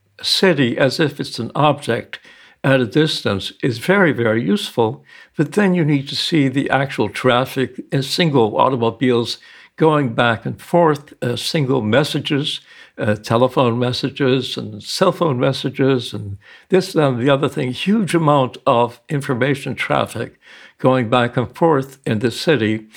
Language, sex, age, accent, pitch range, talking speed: English, male, 60-79, American, 120-150 Hz, 150 wpm